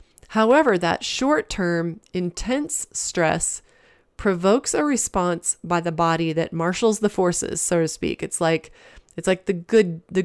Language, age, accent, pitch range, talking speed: English, 30-49, American, 165-200 Hz, 145 wpm